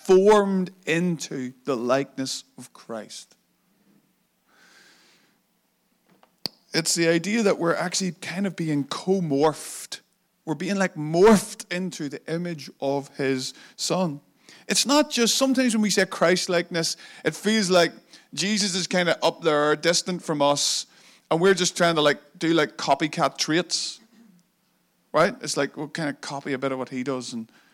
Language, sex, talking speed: English, male, 155 wpm